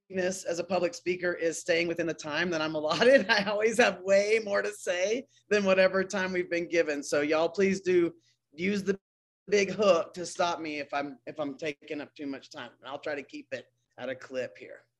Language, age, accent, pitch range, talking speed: English, 30-49, American, 160-190 Hz, 220 wpm